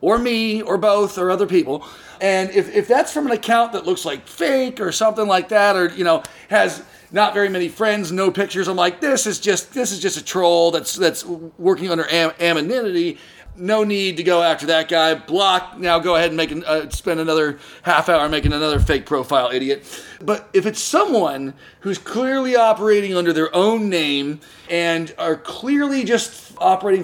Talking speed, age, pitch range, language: 195 wpm, 40-59, 170-230 Hz, English